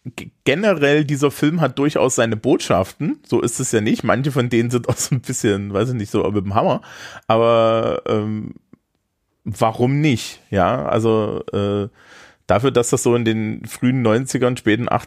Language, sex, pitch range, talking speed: German, male, 105-125 Hz, 170 wpm